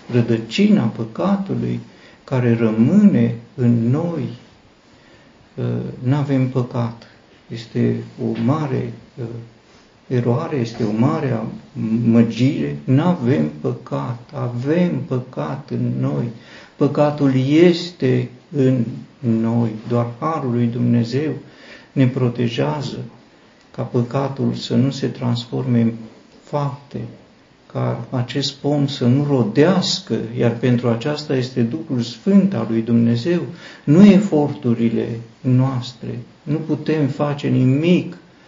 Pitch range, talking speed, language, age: 115-135 Hz, 100 wpm, Romanian, 50-69